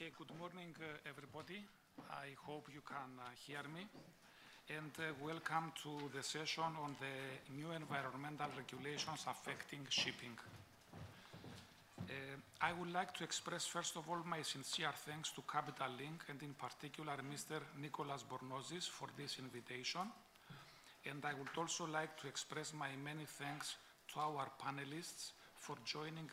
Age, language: 50-69, English